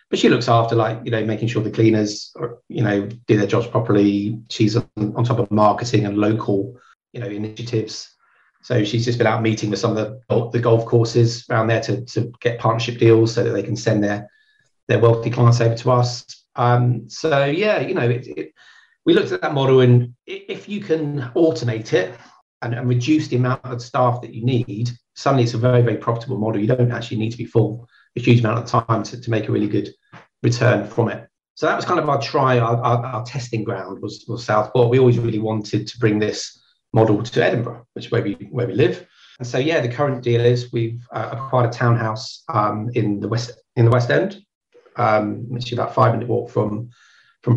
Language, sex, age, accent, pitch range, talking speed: English, male, 40-59, British, 110-125 Hz, 225 wpm